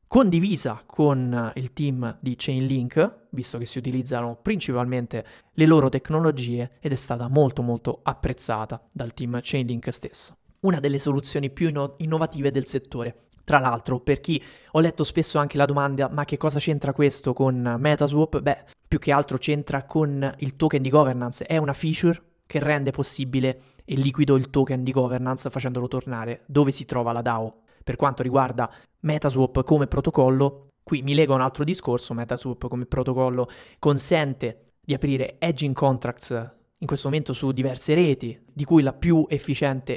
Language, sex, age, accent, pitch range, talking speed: Italian, male, 20-39, native, 125-150 Hz, 160 wpm